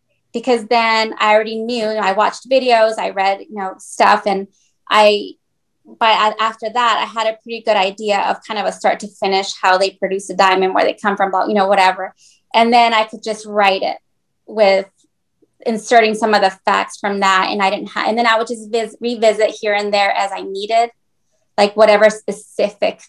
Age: 20-39